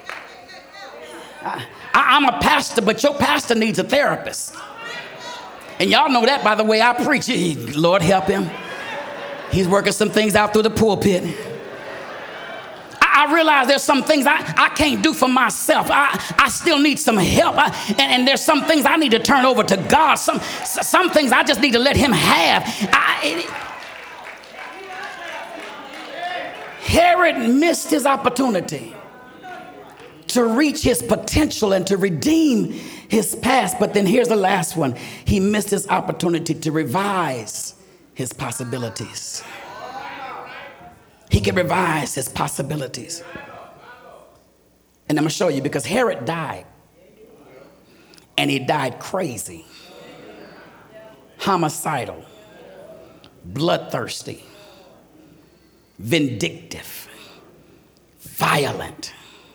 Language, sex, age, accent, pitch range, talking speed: English, male, 40-59, American, 185-290 Hz, 120 wpm